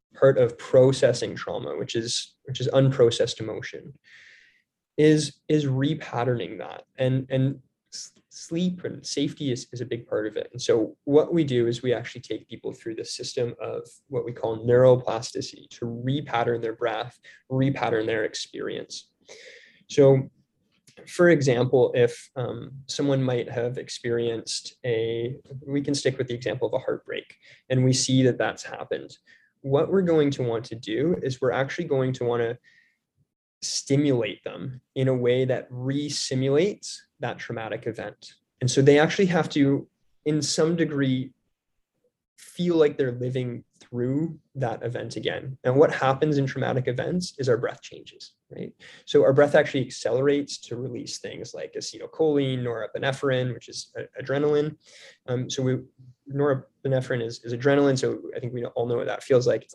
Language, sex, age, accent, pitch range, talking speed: English, male, 20-39, American, 125-170 Hz, 160 wpm